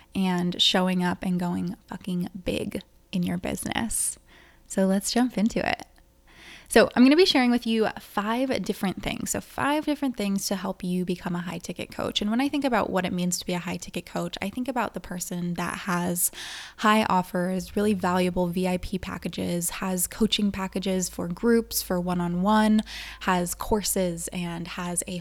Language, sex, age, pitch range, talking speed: English, female, 20-39, 180-215 Hz, 180 wpm